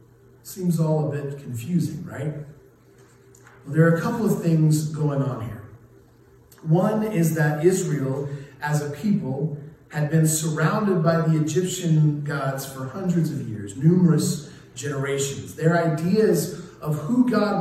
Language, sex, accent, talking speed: English, male, American, 140 wpm